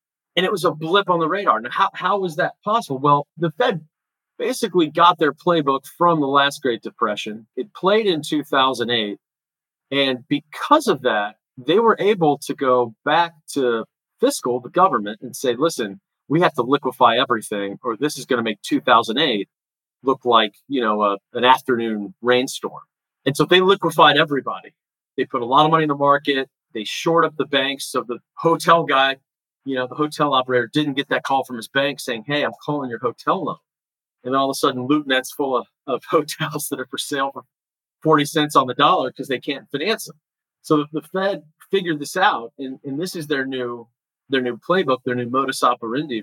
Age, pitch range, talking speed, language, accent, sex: 40-59, 125-160 Hz, 200 wpm, English, American, male